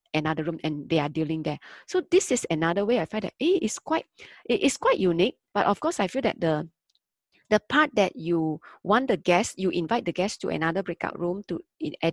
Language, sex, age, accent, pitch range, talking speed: English, female, 20-39, Malaysian, 170-235 Hz, 225 wpm